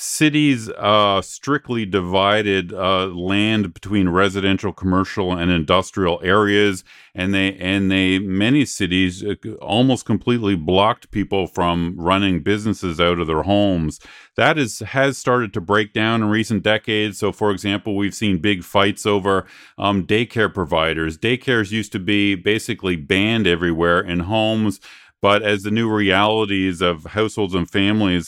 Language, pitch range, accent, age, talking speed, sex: English, 90-105 Hz, American, 40-59, 145 wpm, male